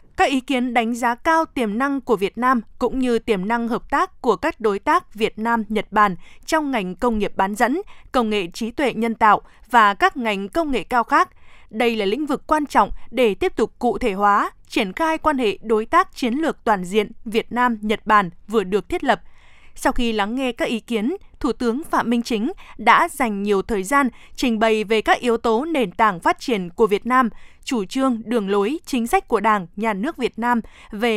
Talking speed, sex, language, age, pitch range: 220 wpm, female, Vietnamese, 20-39, 215-270 Hz